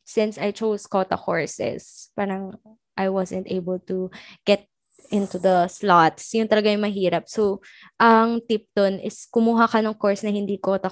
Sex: female